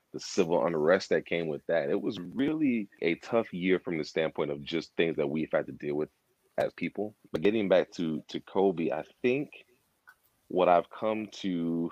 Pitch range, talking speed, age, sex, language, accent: 75-115 Hz, 190 wpm, 30-49, male, English, American